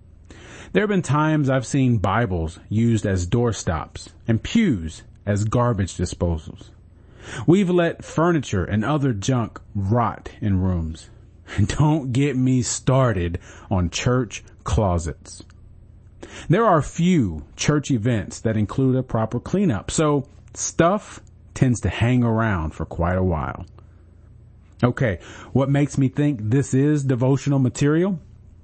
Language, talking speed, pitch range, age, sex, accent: English, 125 wpm, 95-135 Hz, 40-59, male, American